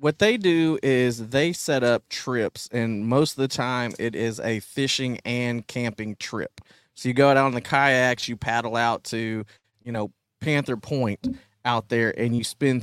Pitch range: 115-140 Hz